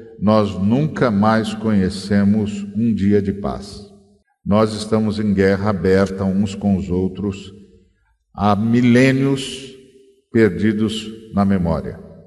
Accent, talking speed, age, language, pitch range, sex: Brazilian, 110 wpm, 50-69, Portuguese, 100-115 Hz, male